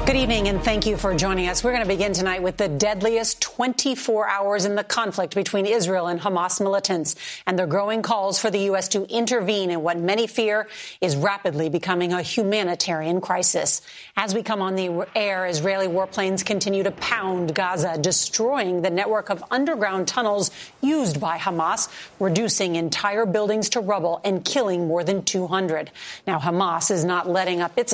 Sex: female